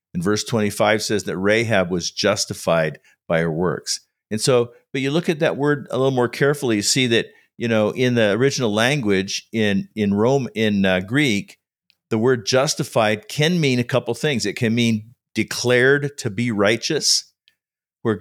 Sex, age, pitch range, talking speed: male, 50-69, 105-135 Hz, 180 wpm